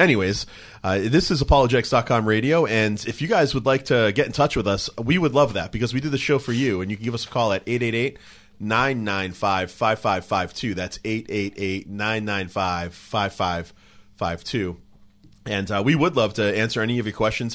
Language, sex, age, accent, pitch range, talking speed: English, male, 30-49, American, 95-115 Hz, 175 wpm